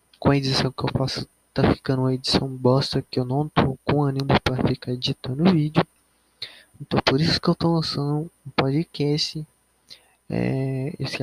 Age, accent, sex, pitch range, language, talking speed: 20-39, Brazilian, male, 130-155 Hz, Portuguese, 175 wpm